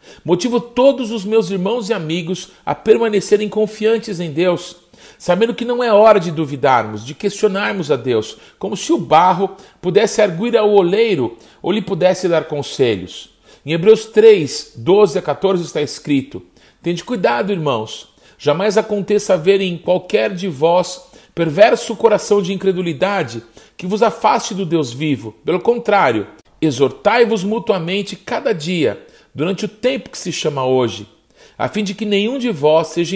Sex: male